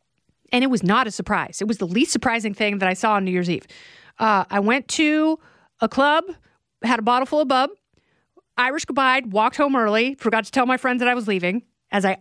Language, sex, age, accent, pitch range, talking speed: English, female, 40-59, American, 230-295 Hz, 230 wpm